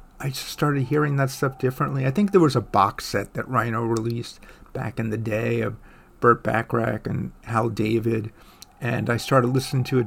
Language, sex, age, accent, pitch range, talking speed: English, male, 50-69, American, 115-145 Hz, 195 wpm